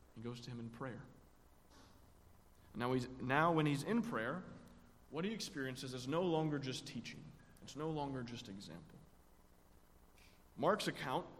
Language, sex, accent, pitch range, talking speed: English, male, American, 115-155 Hz, 140 wpm